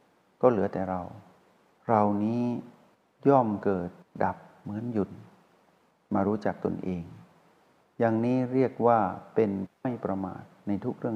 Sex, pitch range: male, 95-120 Hz